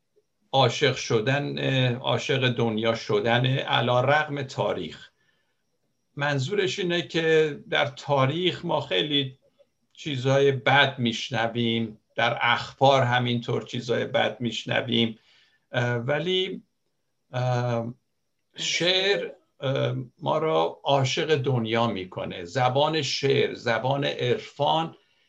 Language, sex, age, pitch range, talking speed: Persian, male, 60-79, 120-150 Hz, 85 wpm